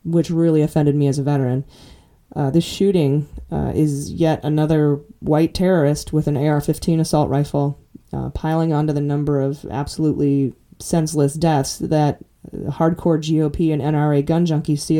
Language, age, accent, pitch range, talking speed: English, 20-39, American, 145-170 Hz, 155 wpm